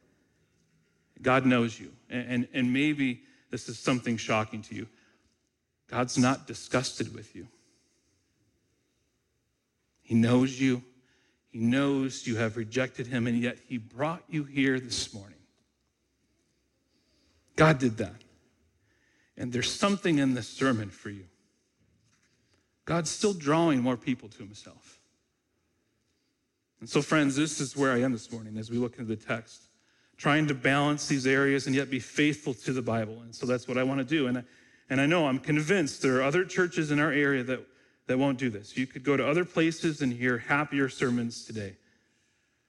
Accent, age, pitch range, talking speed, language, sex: American, 50-69, 120-140 Hz, 165 wpm, English, male